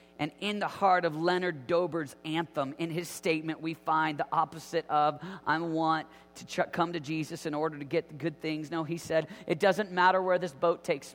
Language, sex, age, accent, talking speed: English, male, 40-59, American, 205 wpm